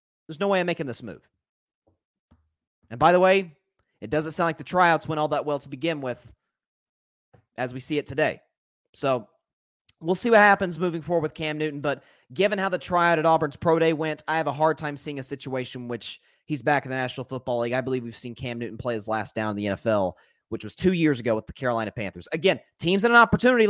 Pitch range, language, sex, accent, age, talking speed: 135-205 Hz, English, male, American, 30-49, 235 wpm